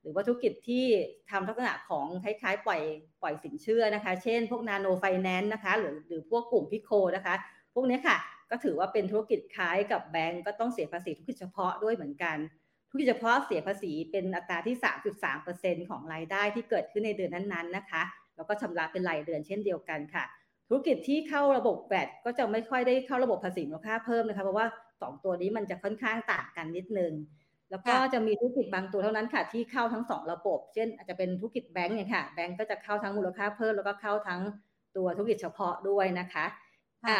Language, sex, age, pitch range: Thai, female, 30-49, 180-230 Hz